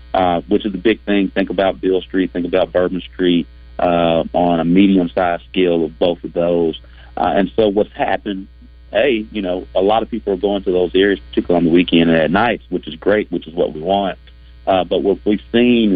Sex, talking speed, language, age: male, 225 wpm, English, 40-59